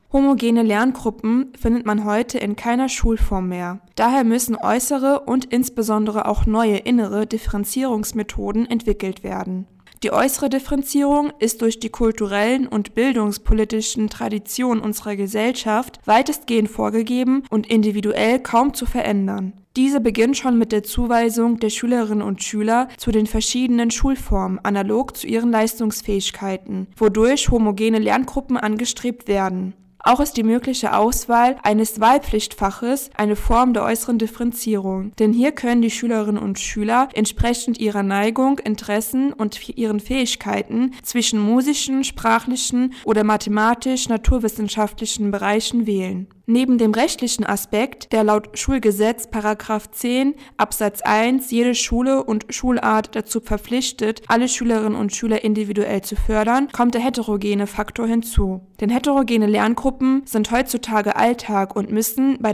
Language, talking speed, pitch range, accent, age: German, 125 wpm, 210-245 Hz, German, 20-39